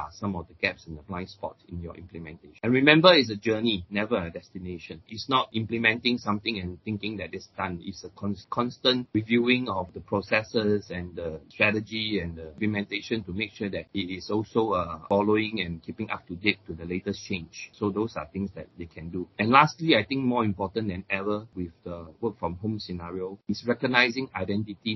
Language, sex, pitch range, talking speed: English, male, 90-110 Hz, 200 wpm